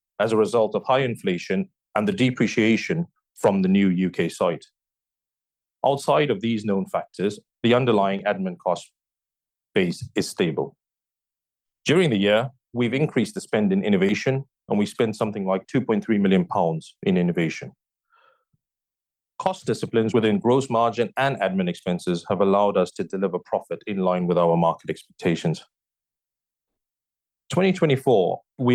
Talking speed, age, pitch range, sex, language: 140 wpm, 30-49, 95-125 Hz, male, English